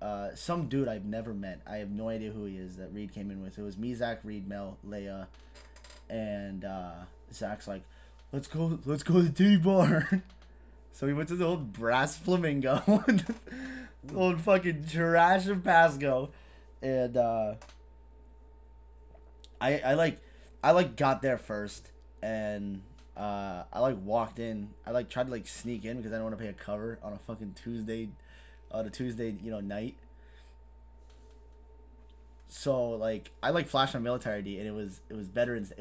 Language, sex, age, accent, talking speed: English, male, 20-39, American, 180 wpm